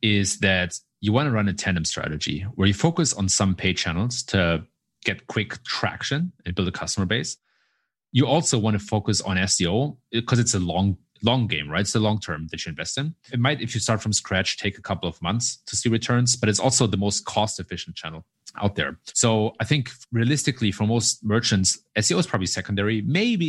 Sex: male